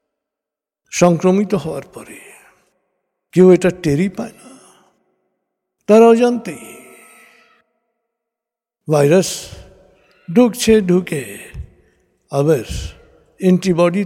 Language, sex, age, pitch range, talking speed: Bengali, male, 60-79, 150-215 Hz, 50 wpm